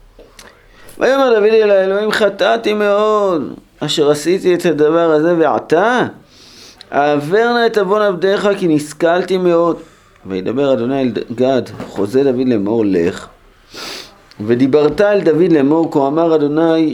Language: Hebrew